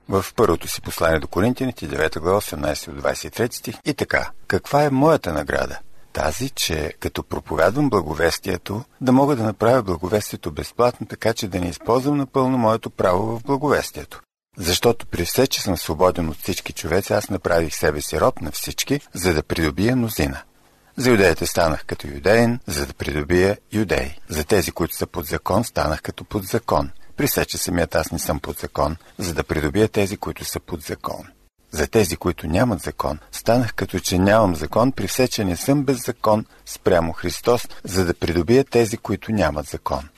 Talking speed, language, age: 175 wpm, Bulgarian, 50-69